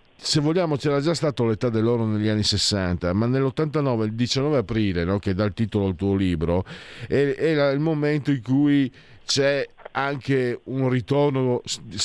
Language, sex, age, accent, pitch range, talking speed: Italian, male, 50-69, native, 110-145 Hz, 160 wpm